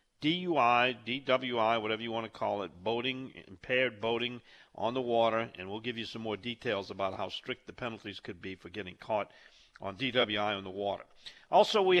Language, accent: English, American